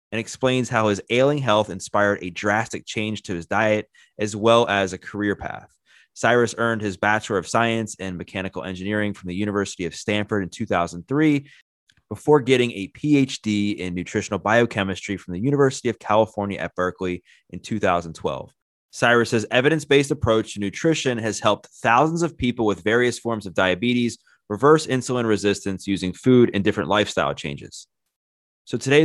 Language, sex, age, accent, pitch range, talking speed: English, male, 20-39, American, 95-120 Hz, 160 wpm